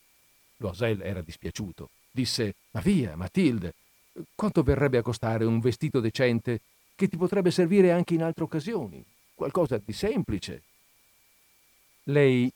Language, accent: Italian, native